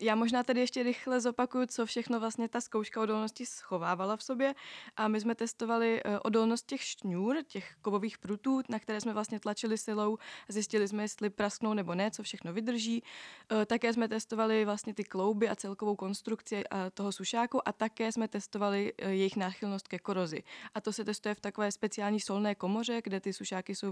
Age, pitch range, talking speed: 20-39, 200-230 Hz, 185 wpm